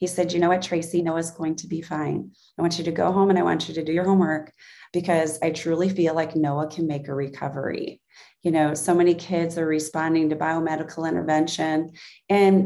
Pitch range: 160-195 Hz